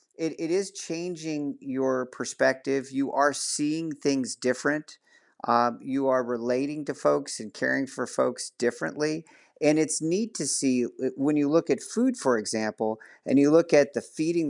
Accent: American